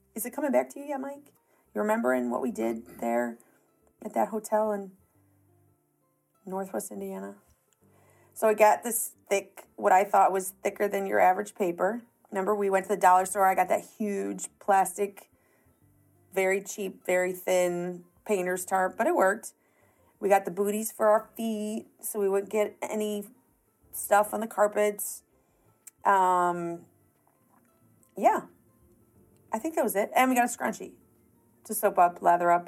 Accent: American